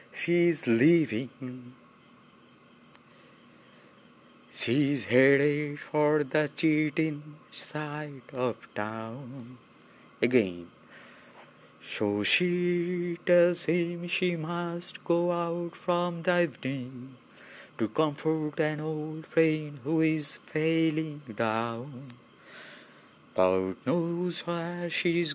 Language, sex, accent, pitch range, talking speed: Bengali, male, native, 135-175 Hz, 85 wpm